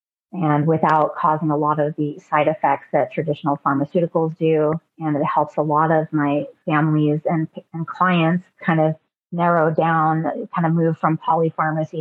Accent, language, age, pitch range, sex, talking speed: American, English, 30-49, 155-175 Hz, female, 165 wpm